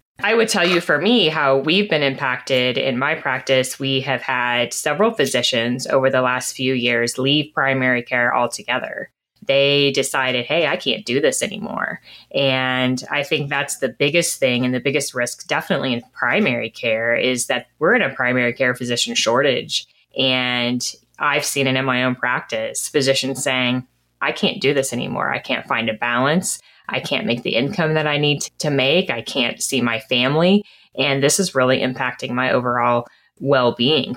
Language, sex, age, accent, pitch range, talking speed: English, female, 10-29, American, 125-150 Hz, 180 wpm